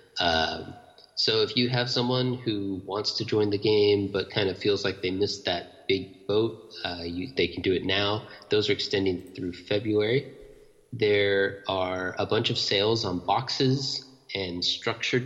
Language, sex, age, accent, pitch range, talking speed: English, male, 30-49, American, 95-125 Hz, 170 wpm